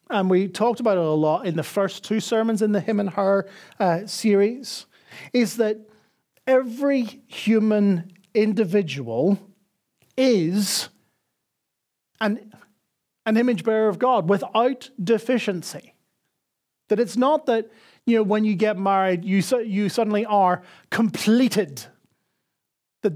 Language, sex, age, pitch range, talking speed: English, male, 40-59, 180-220 Hz, 130 wpm